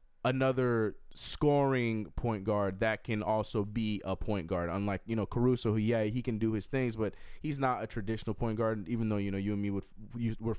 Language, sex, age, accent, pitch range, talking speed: English, male, 20-39, American, 105-130 Hz, 220 wpm